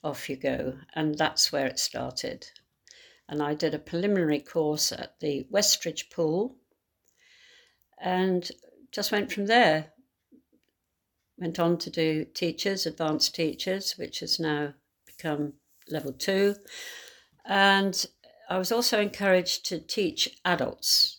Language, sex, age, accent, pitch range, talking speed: English, female, 60-79, British, 150-195 Hz, 125 wpm